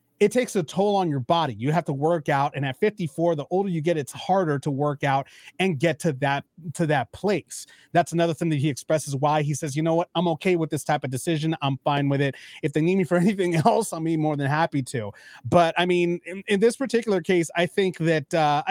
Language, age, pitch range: English, 30-49, 145-170 Hz